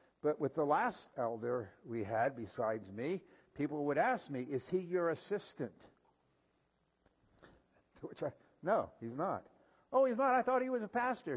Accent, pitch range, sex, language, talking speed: American, 135-195 Hz, male, English, 170 wpm